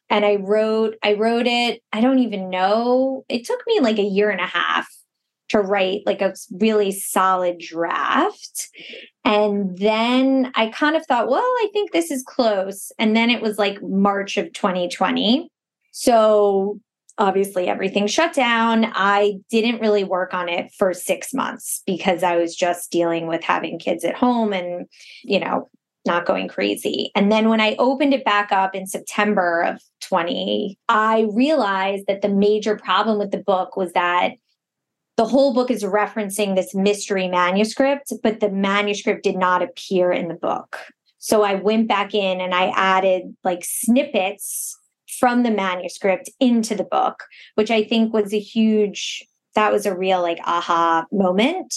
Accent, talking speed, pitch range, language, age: American, 170 wpm, 190-225 Hz, English, 20-39